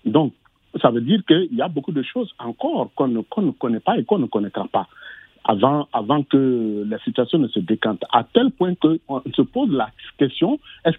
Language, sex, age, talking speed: French, male, 50-69, 215 wpm